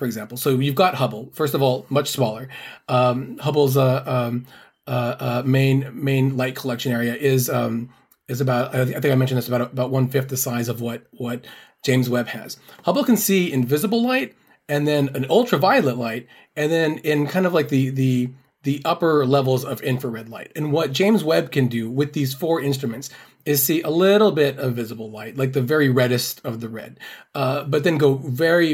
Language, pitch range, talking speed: English, 125-145 Hz, 205 wpm